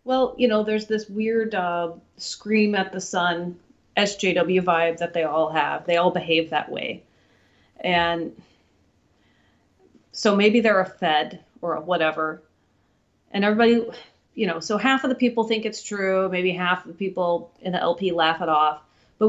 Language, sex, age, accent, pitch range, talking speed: English, female, 30-49, American, 165-200 Hz, 170 wpm